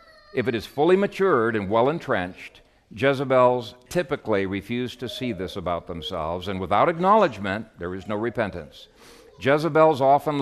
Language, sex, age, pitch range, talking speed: English, male, 60-79, 95-125 Hz, 140 wpm